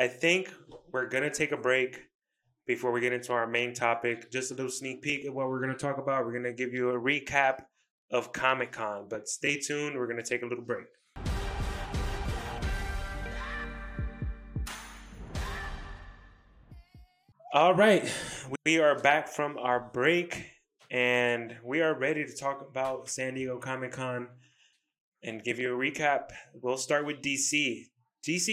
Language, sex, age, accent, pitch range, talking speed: English, male, 20-39, American, 125-145 Hz, 160 wpm